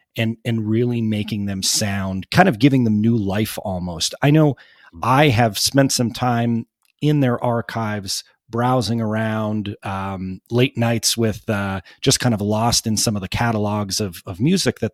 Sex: male